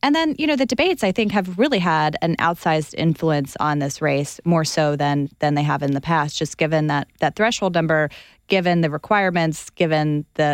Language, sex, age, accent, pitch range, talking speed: English, female, 20-39, American, 155-190 Hz, 210 wpm